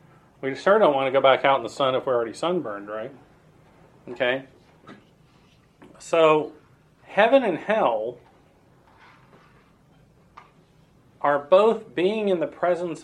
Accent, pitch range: American, 130-165 Hz